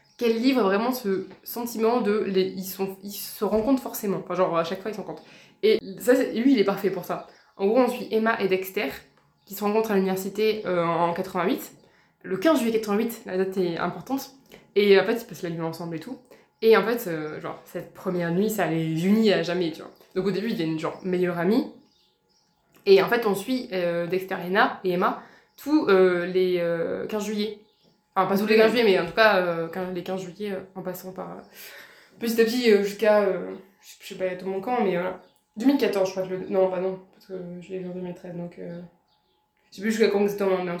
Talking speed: 245 wpm